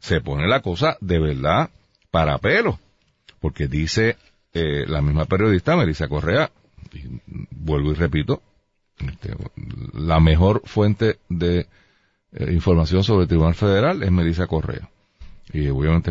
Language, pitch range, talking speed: Spanish, 85-115 Hz, 130 wpm